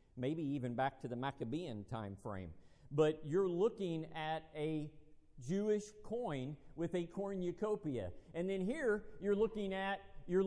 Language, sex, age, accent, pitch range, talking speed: English, male, 50-69, American, 130-190 Hz, 145 wpm